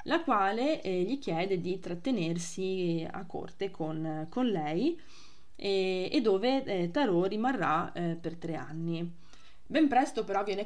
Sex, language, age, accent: female, Italian, 20-39, native